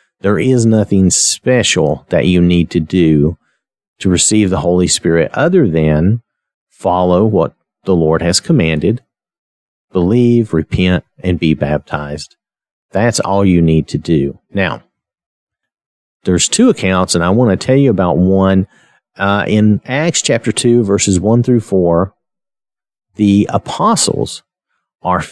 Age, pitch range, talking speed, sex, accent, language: 50-69, 85-110 Hz, 135 wpm, male, American, English